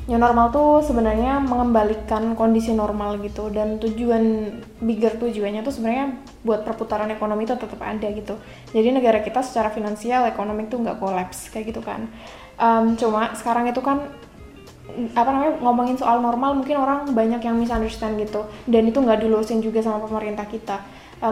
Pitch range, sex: 220-240 Hz, female